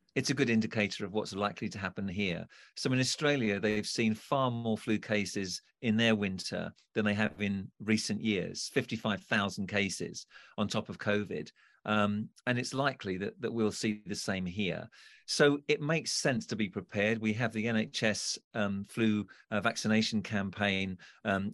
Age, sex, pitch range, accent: 50-69, male, 100-115 Hz, British